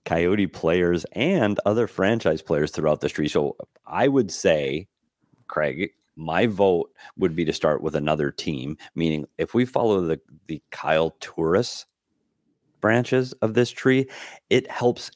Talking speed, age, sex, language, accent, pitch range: 145 wpm, 30-49, male, English, American, 80-110 Hz